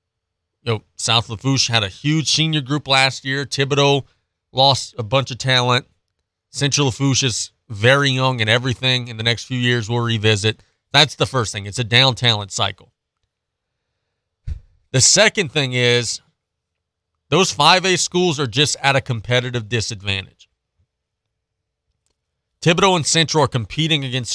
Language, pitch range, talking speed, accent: English, 105-140 Hz, 145 wpm, American